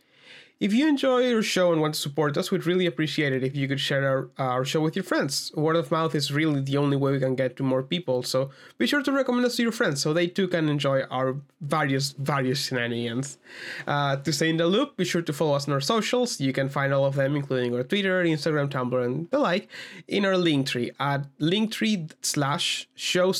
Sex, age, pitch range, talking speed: male, 20-39, 140-190 Hz, 230 wpm